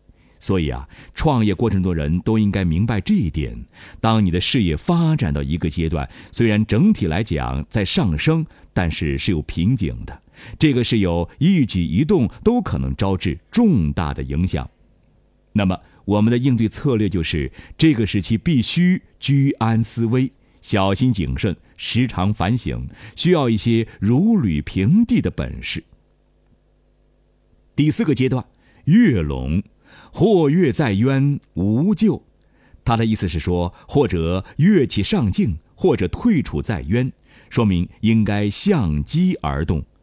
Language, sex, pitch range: Chinese, male, 85-120 Hz